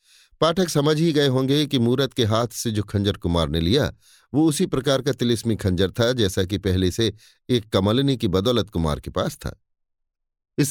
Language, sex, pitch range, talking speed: Hindi, male, 100-145 Hz, 195 wpm